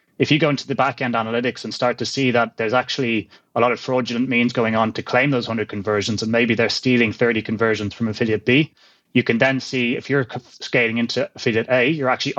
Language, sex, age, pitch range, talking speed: English, male, 20-39, 115-130 Hz, 235 wpm